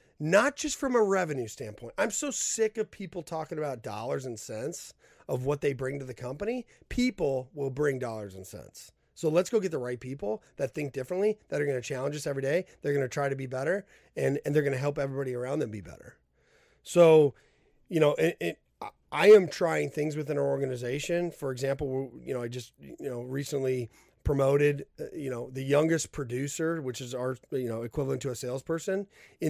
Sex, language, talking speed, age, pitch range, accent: male, English, 205 wpm, 30-49, 135-185 Hz, American